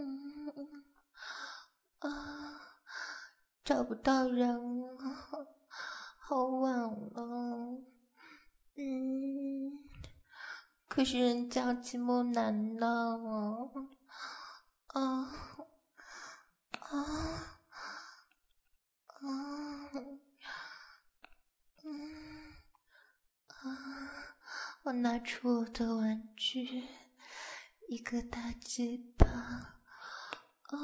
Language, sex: Chinese, female